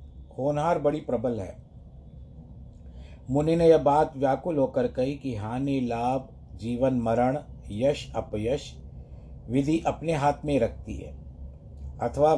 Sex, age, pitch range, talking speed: male, 50-69, 110-140 Hz, 120 wpm